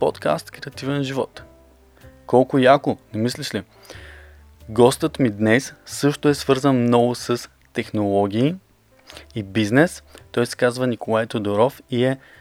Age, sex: 20-39, male